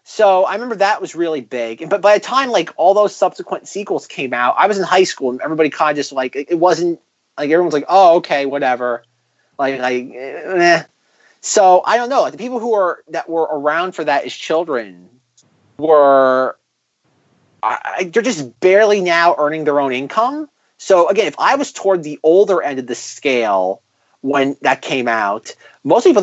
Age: 30-49